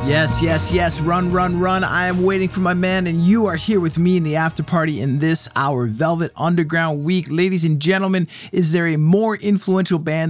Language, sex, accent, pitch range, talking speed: English, male, American, 130-170 Hz, 215 wpm